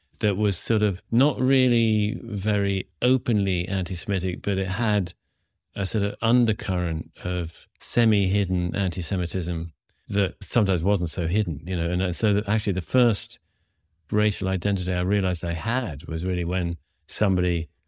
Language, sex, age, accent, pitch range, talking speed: English, male, 40-59, British, 85-105 Hz, 140 wpm